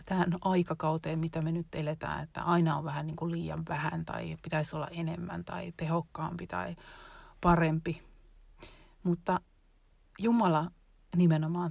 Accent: native